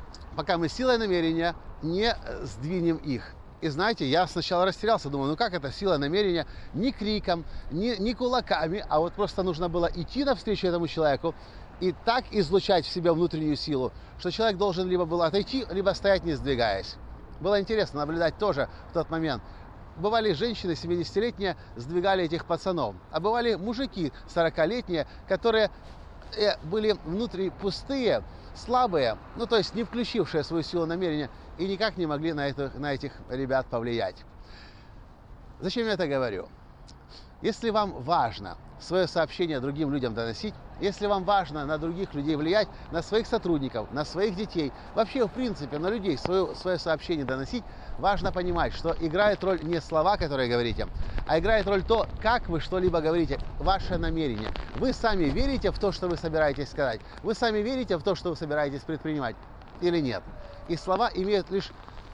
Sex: male